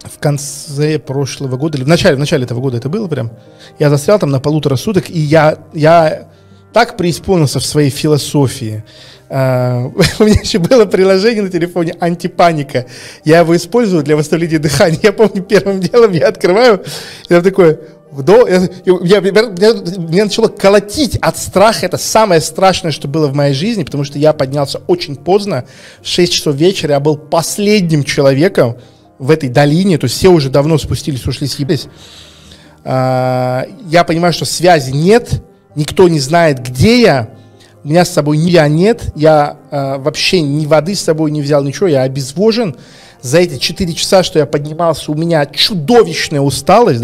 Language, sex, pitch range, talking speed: Russian, male, 140-180 Hz, 165 wpm